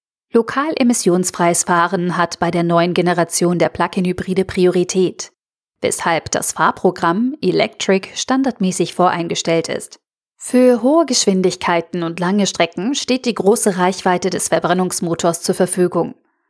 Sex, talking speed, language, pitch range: female, 115 wpm, German, 175-210 Hz